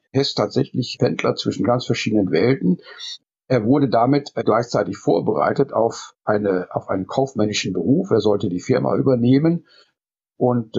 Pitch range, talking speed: 110-140 Hz, 140 wpm